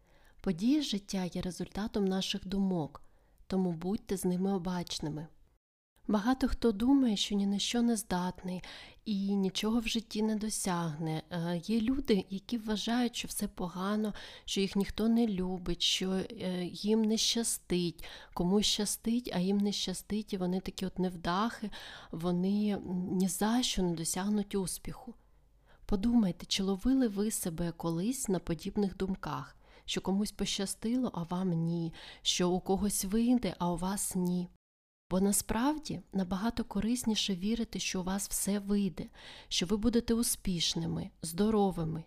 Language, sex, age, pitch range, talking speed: Ukrainian, female, 30-49, 180-215 Hz, 140 wpm